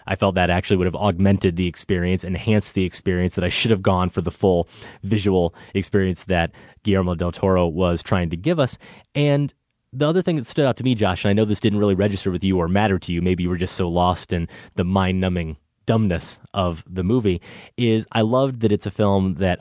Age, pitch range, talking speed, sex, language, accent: 30-49, 90-110 Hz, 235 wpm, male, English, American